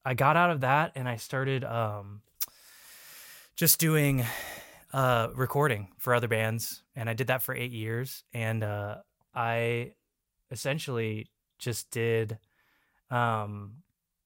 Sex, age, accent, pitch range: male, 20-39, American, 110-130 Hz